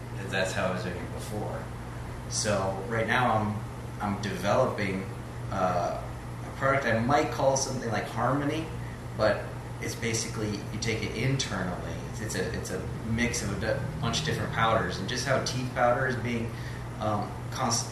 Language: English